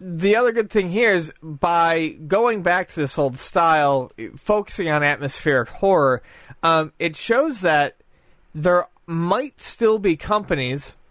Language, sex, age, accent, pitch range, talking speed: English, male, 30-49, American, 135-175 Hz, 140 wpm